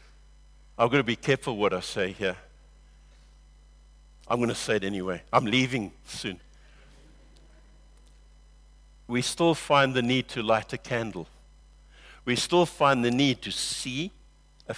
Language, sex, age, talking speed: English, male, 60-79, 140 wpm